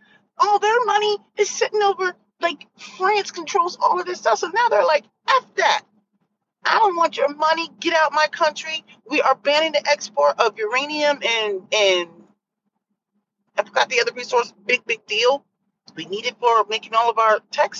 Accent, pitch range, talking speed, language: American, 205-315 Hz, 185 wpm, English